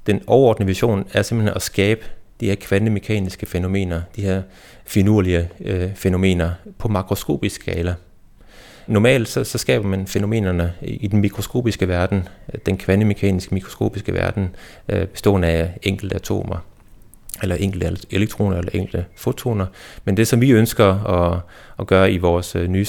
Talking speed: 145 wpm